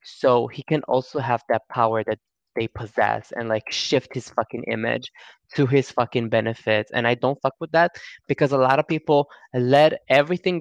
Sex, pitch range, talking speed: male, 120-160 Hz, 185 wpm